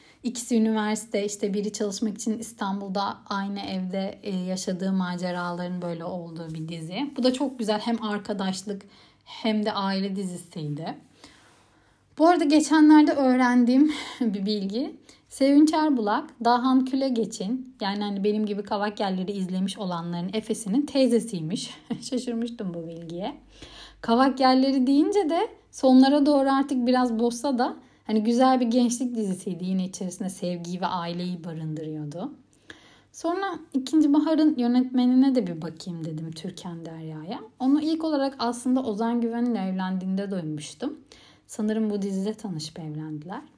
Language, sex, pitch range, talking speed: Turkish, female, 185-255 Hz, 125 wpm